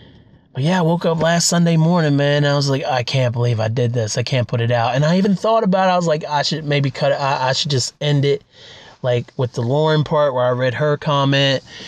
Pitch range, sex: 125-150 Hz, male